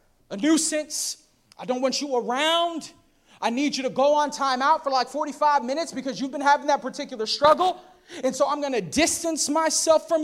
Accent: American